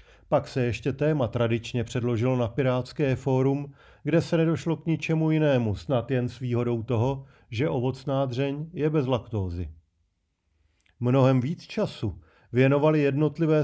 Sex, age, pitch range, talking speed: male, 40-59, 115-140 Hz, 135 wpm